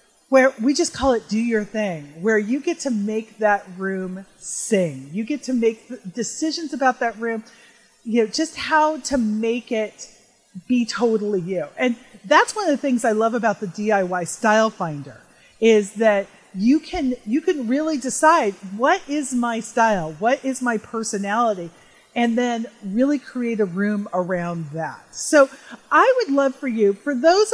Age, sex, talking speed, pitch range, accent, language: 40-59, female, 175 wpm, 210-275 Hz, American, English